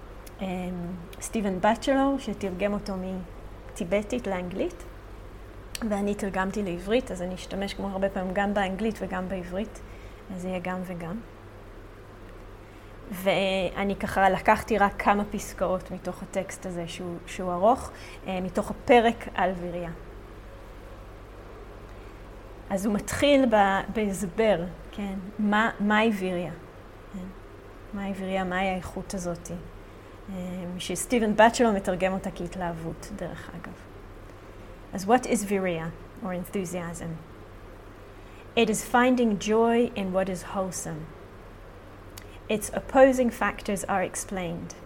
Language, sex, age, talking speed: English, female, 20-39, 100 wpm